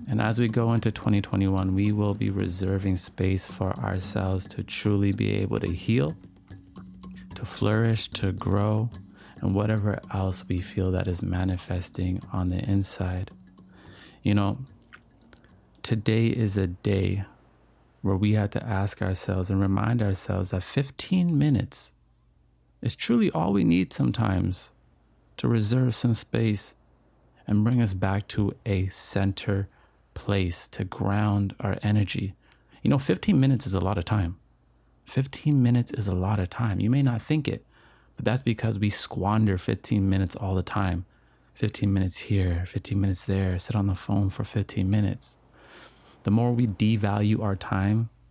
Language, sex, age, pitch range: English, male, 30-49, 95-110 Hz